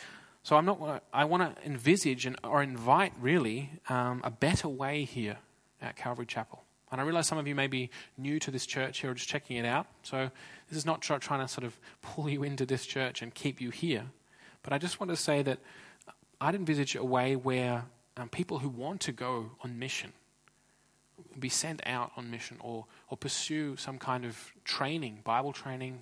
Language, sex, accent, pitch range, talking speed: English, male, Australian, 125-145 Hz, 210 wpm